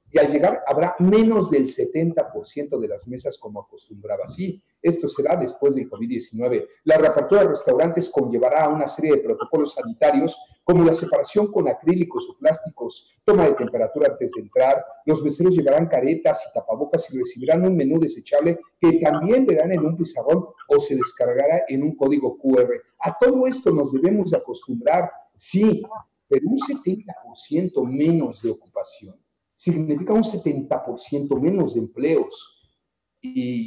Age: 40-59